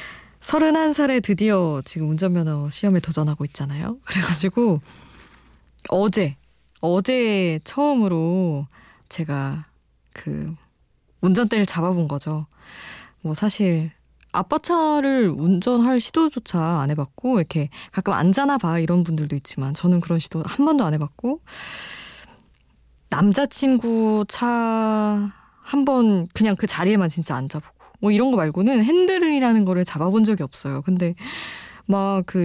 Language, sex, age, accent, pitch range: Korean, female, 20-39, native, 160-230 Hz